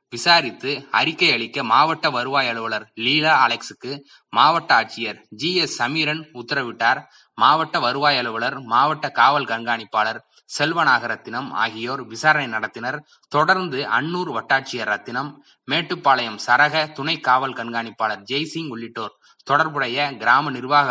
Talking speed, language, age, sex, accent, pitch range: 110 wpm, Tamil, 20-39, male, native, 120-155 Hz